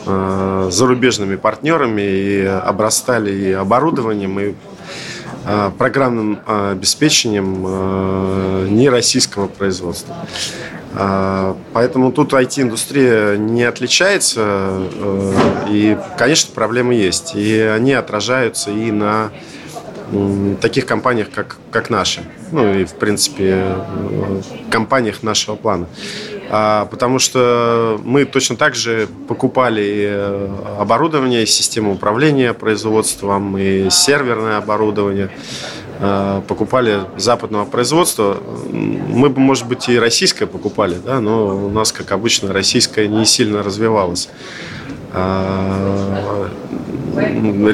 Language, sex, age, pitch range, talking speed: Russian, male, 20-39, 100-125 Hz, 90 wpm